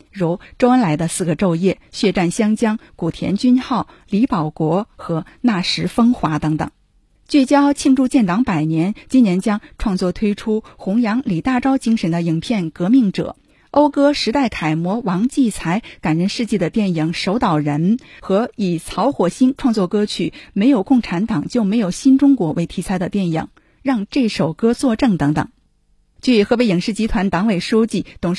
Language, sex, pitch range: Chinese, female, 175-250 Hz